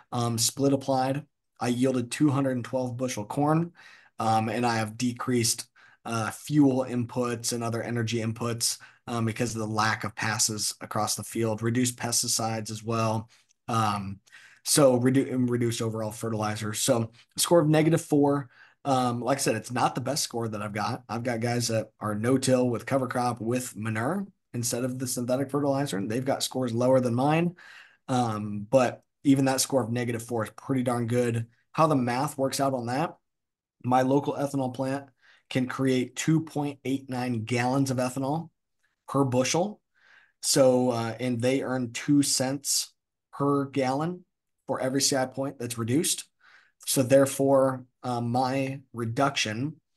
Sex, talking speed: male, 160 wpm